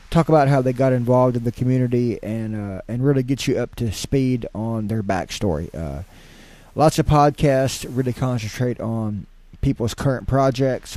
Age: 20-39